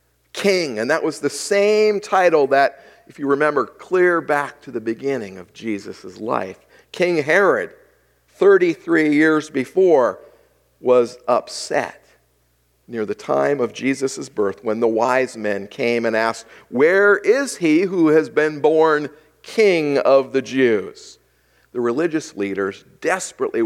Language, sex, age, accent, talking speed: English, male, 50-69, American, 135 wpm